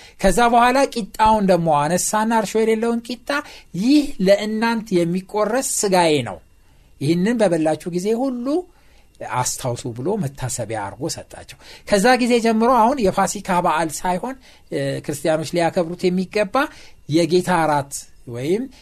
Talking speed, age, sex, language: 110 wpm, 60-79, male, Amharic